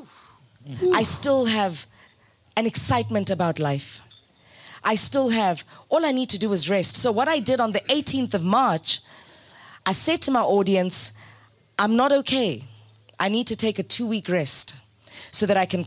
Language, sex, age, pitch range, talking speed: English, female, 20-39, 175-275 Hz, 175 wpm